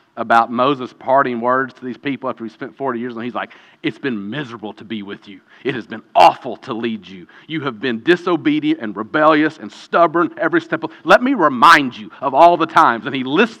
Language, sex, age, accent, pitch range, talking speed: English, male, 40-59, American, 160-265 Hz, 225 wpm